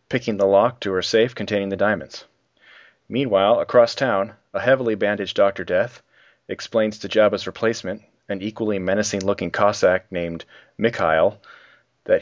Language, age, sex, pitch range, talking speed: English, 30-49, male, 100-120 Hz, 135 wpm